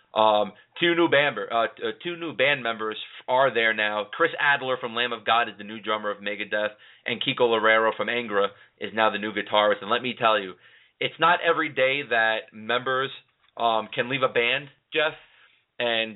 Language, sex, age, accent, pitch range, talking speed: English, male, 30-49, American, 110-130 Hz, 195 wpm